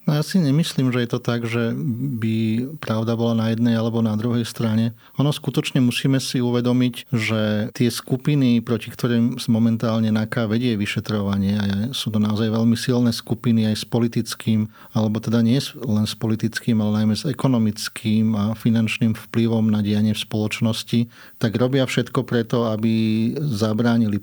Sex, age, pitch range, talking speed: male, 30-49, 110-120 Hz, 160 wpm